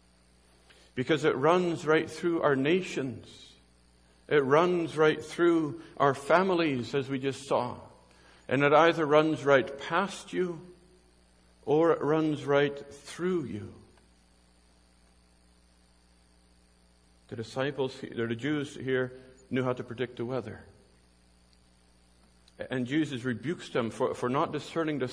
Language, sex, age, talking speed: English, male, 50-69, 115 wpm